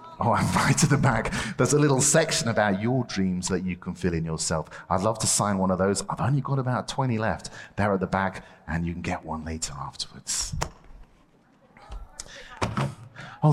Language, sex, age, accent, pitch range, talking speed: English, male, 30-49, British, 110-180 Hz, 195 wpm